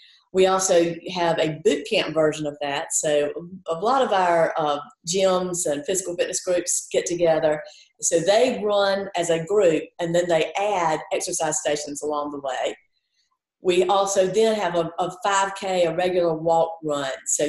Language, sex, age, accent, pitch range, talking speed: English, female, 40-59, American, 155-190 Hz, 170 wpm